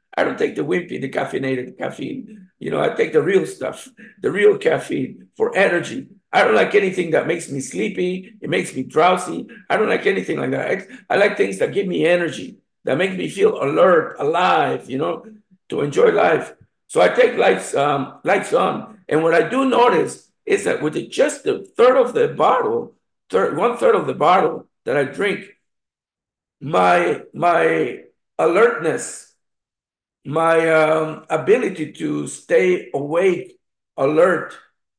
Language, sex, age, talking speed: English, male, 50-69, 165 wpm